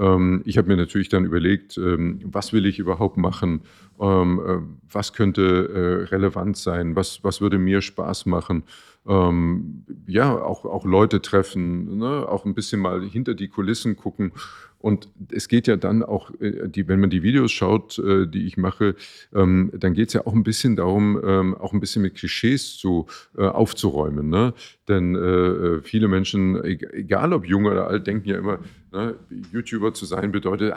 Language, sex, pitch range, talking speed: German, male, 95-105 Hz, 155 wpm